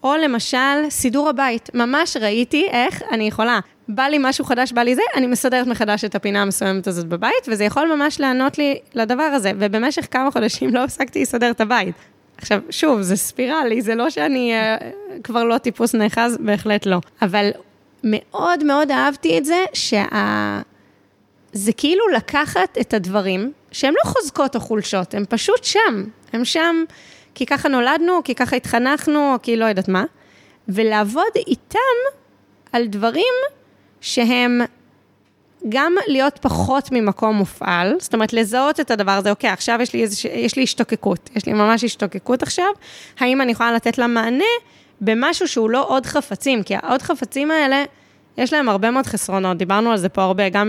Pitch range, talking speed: 210-280 Hz, 165 wpm